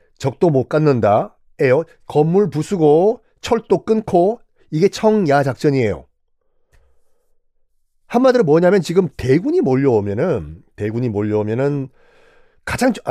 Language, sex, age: Korean, male, 40-59